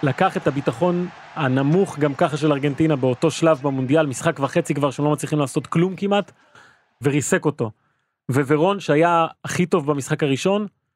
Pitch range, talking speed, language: 145-175 Hz, 150 wpm, Hebrew